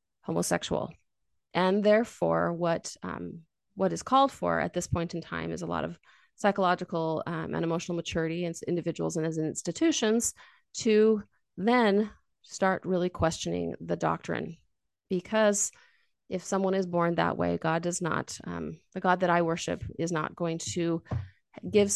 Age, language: 30-49, English